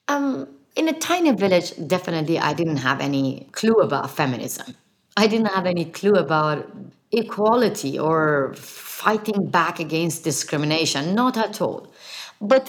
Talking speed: 135 wpm